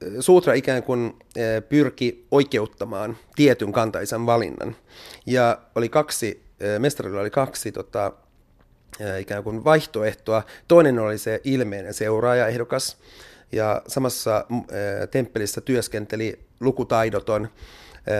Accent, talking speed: native, 95 wpm